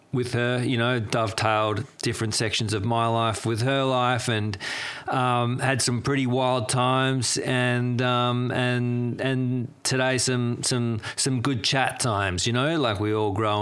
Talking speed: 165 wpm